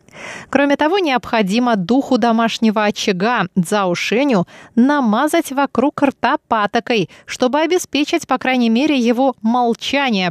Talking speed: 110 wpm